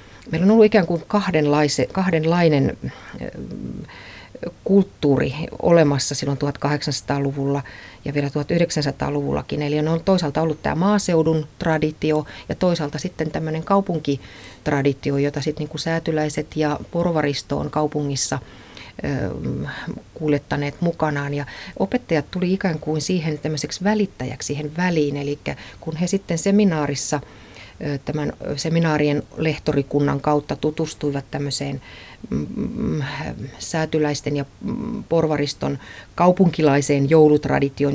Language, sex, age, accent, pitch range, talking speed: Finnish, female, 30-49, native, 140-165 Hz, 100 wpm